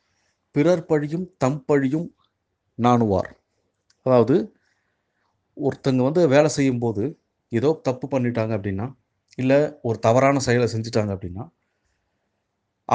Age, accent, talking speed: 30-49, native, 90 wpm